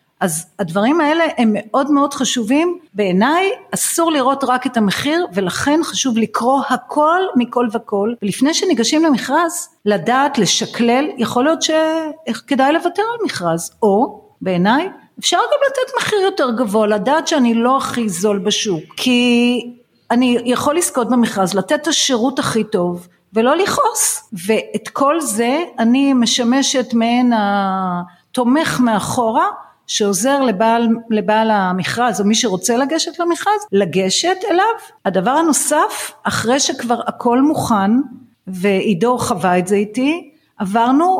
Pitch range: 220-290 Hz